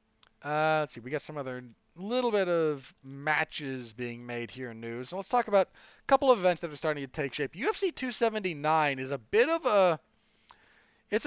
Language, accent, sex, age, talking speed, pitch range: English, American, male, 40-59, 200 wpm, 140-210 Hz